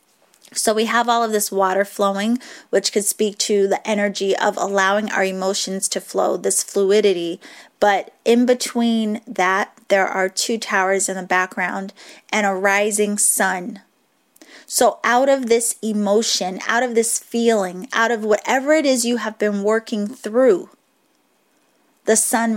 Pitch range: 195-230 Hz